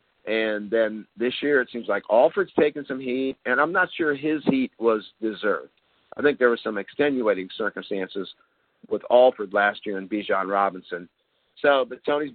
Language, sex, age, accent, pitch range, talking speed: English, male, 50-69, American, 105-130 Hz, 175 wpm